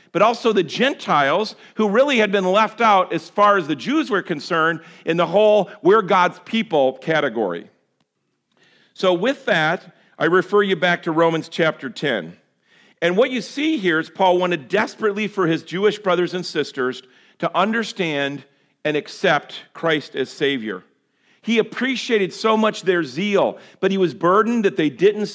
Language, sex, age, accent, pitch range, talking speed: English, male, 50-69, American, 155-215 Hz, 165 wpm